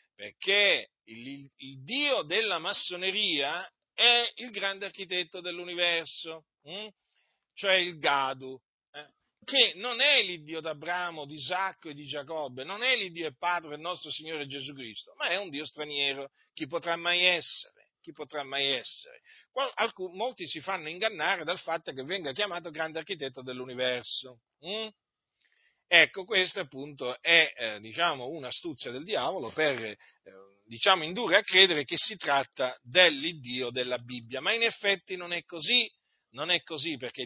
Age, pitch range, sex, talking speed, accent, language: 40-59, 140-200 Hz, male, 155 wpm, native, Italian